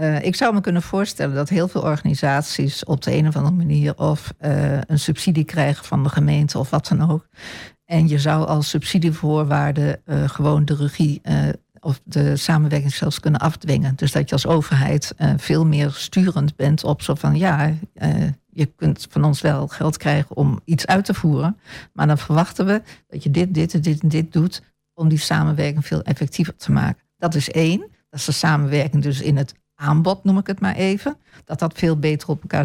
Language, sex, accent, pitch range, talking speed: Dutch, female, Dutch, 150-175 Hz, 210 wpm